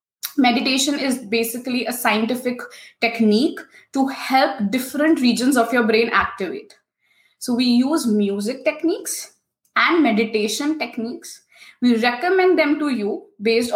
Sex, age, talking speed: female, 20-39, 120 wpm